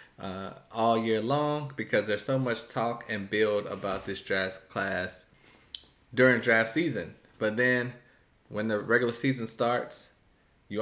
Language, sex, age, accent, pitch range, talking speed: English, male, 20-39, American, 105-130 Hz, 145 wpm